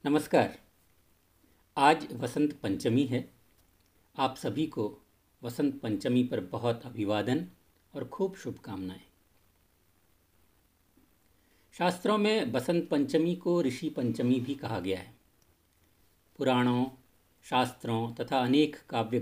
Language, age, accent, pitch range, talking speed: Hindi, 50-69, native, 90-130 Hz, 100 wpm